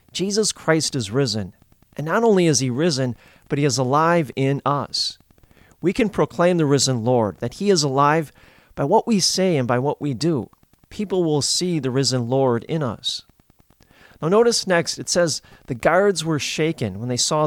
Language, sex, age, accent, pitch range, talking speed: English, male, 40-59, American, 125-170 Hz, 190 wpm